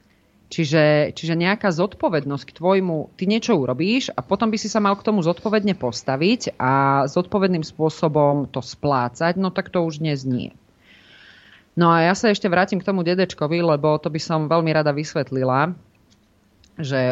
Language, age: Slovak, 30-49